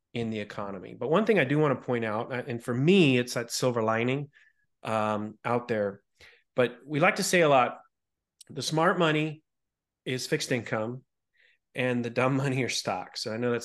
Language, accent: English, American